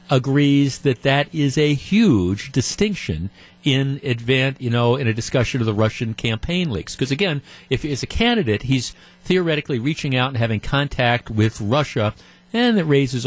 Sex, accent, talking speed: male, American, 170 wpm